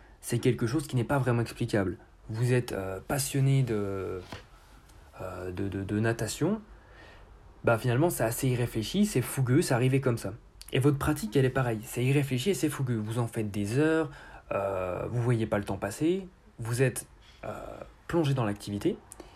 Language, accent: French, French